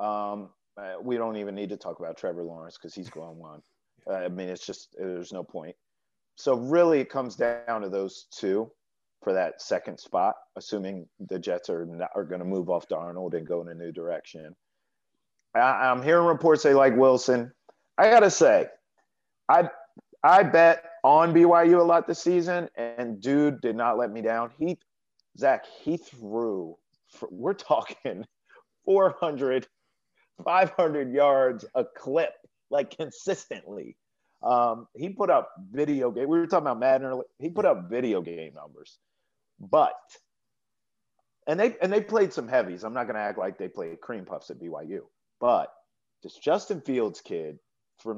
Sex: male